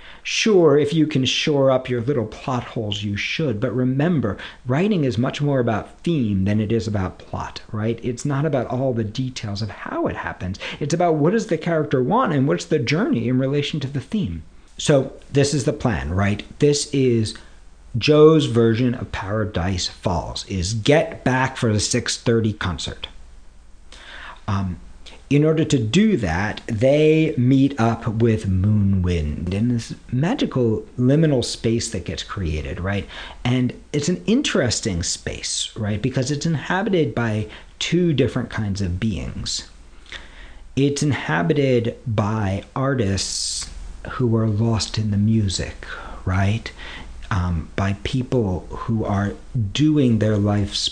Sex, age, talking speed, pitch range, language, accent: male, 50-69, 150 wpm, 95-135 Hz, English, American